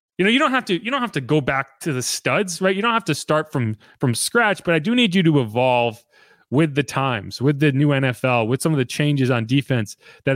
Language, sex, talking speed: English, male, 265 wpm